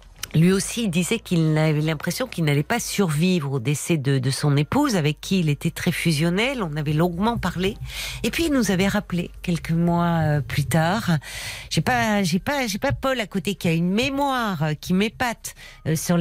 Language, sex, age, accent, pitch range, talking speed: French, female, 50-69, French, 160-215 Hz, 200 wpm